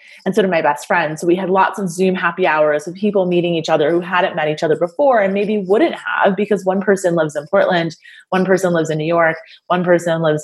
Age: 20-39